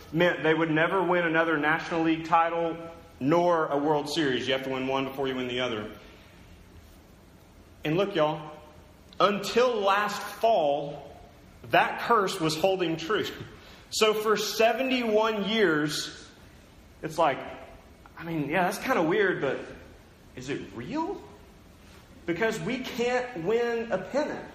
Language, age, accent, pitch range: English, 30-49, American, 135-185 Hz